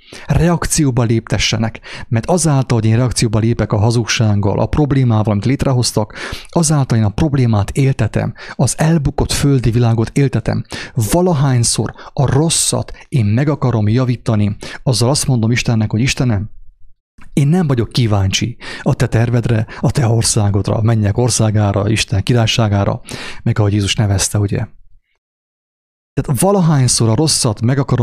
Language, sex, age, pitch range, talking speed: English, male, 30-49, 110-140 Hz, 130 wpm